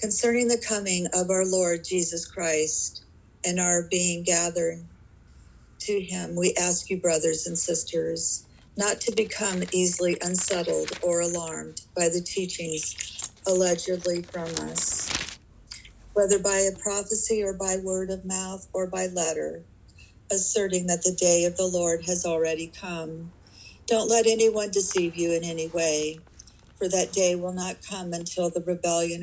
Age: 50-69